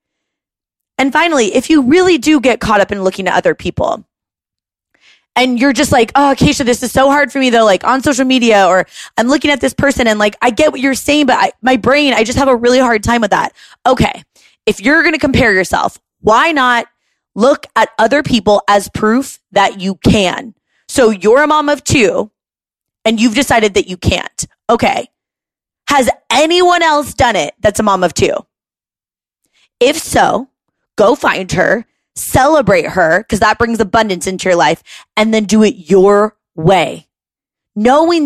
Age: 20-39